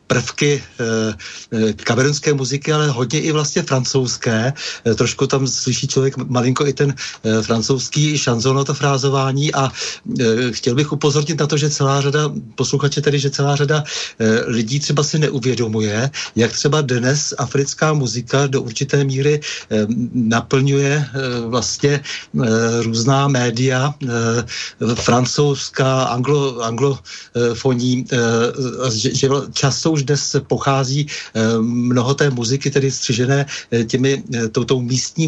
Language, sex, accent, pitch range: Czech, male, native, 120-140 Hz